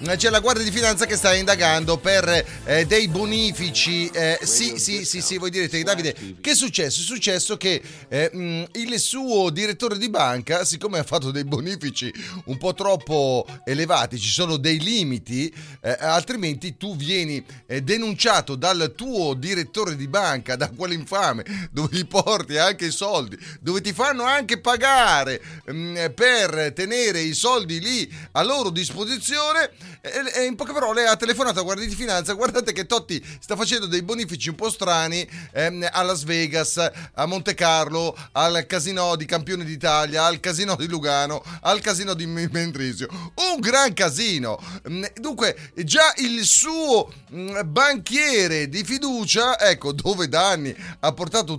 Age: 30-49